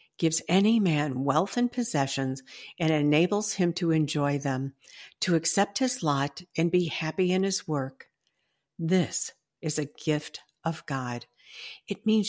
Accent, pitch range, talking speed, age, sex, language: American, 150-220 Hz, 145 wpm, 60-79, female, English